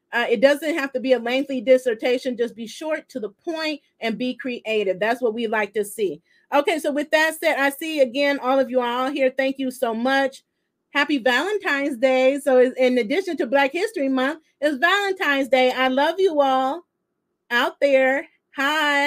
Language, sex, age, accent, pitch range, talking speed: English, female, 40-59, American, 250-295 Hz, 195 wpm